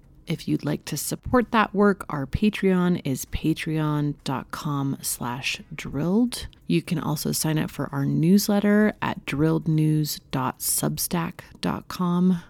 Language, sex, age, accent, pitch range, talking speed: English, female, 30-49, American, 140-190 Hz, 105 wpm